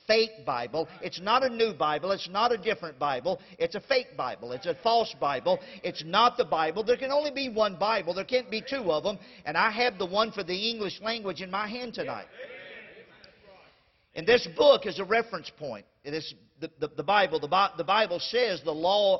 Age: 50-69